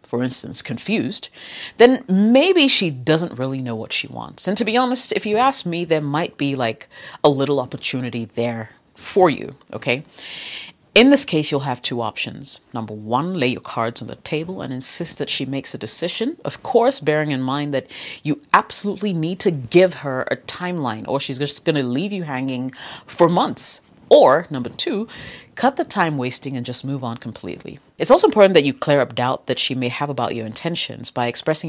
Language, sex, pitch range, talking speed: English, female, 125-175 Hz, 200 wpm